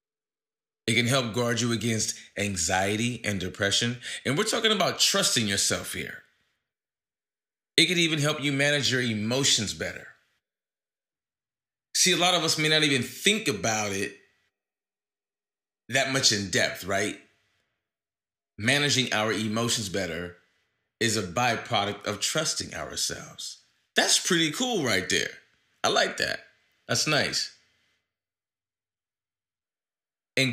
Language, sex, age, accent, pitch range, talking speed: English, male, 30-49, American, 100-130 Hz, 120 wpm